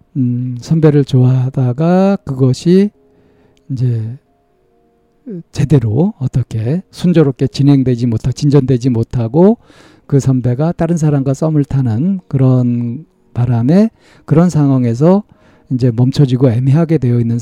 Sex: male